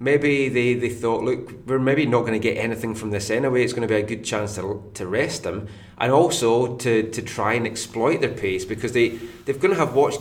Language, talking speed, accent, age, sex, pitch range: English, 245 wpm, British, 30-49, male, 105-130 Hz